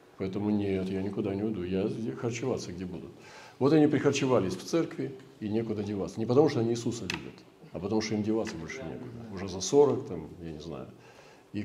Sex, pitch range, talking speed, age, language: male, 100-130 Hz, 200 wpm, 40-59, Russian